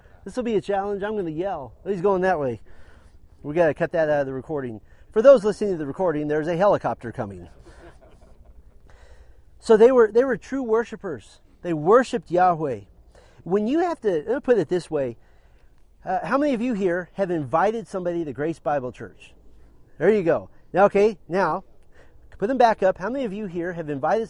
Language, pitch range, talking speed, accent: English, 135-200 Hz, 205 wpm, American